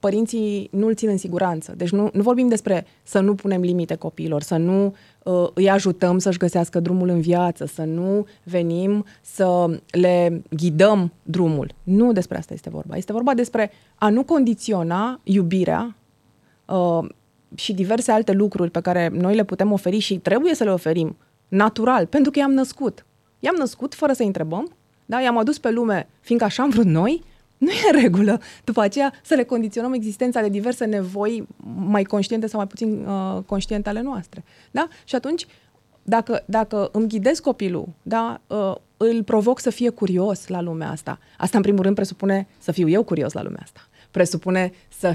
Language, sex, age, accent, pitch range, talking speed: Romanian, female, 20-39, native, 175-225 Hz, 180 wpm